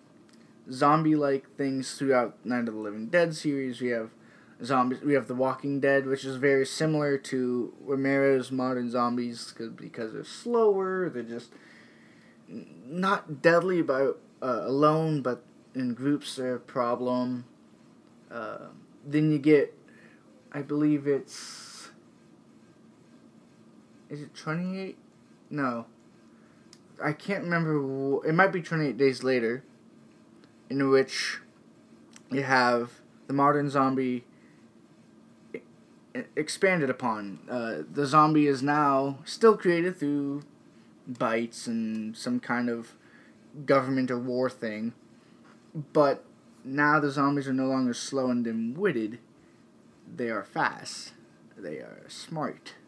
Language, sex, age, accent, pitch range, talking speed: English, male, 20-39, American, 125-150 Hz, 120 wpm